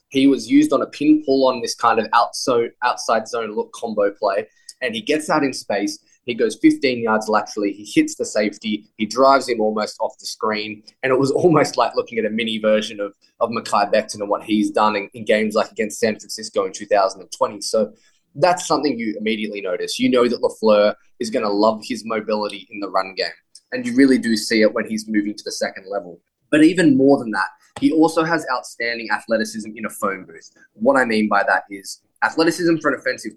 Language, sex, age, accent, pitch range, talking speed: English, male, 10-29, Australian, 105-180 Hz, 220 wpm